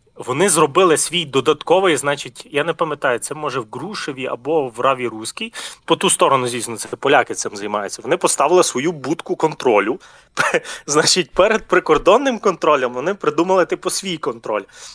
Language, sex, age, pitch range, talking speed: Ukrainian, male, 20-39, 135-195 Hz, 155 wpm